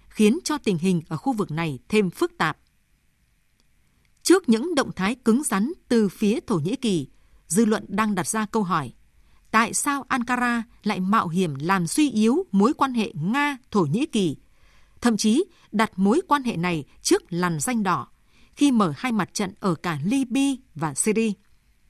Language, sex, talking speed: Vietnamese, female, 180 wpm